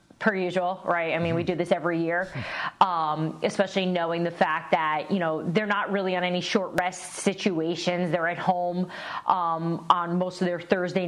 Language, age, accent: English, 30-49, American